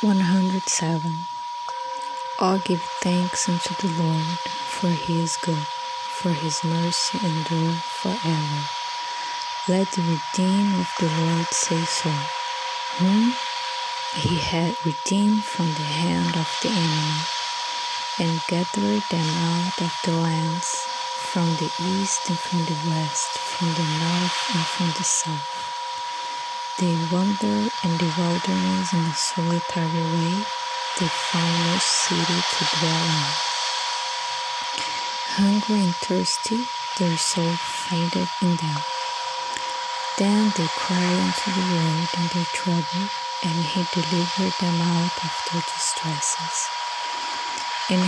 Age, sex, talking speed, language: 20-39, female, 120 wpm, English